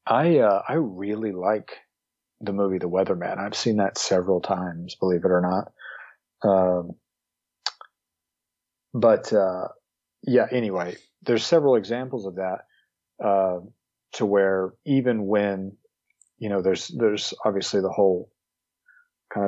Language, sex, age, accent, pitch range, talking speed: English, male, 40-59, American, 90-110 Hz, 130 wpm